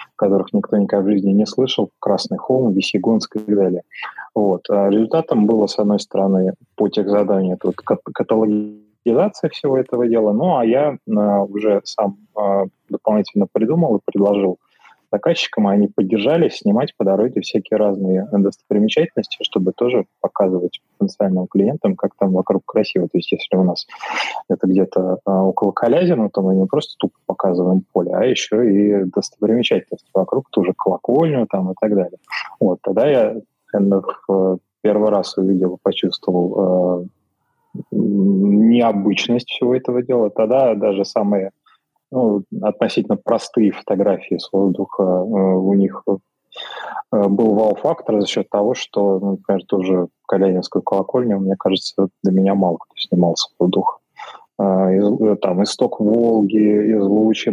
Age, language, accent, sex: 20-39, Russian, native, male